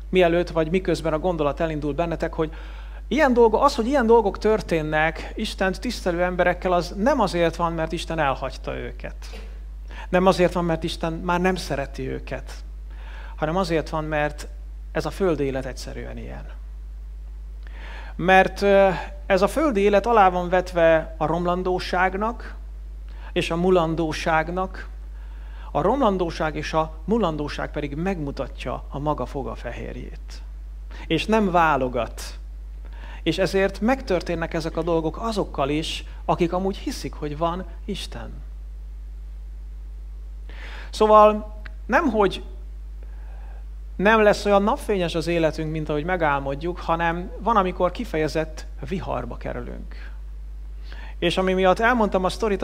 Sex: male